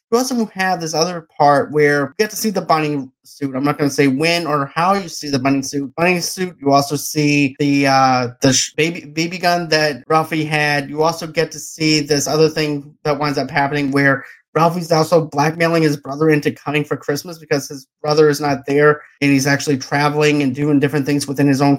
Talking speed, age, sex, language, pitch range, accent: 220 wpm, 30-49, male, English, 140-165 Hz, American